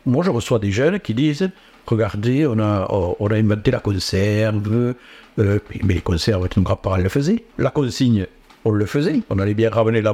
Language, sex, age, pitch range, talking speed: French, male, 60-79, 105-135 Hz, 200 wpm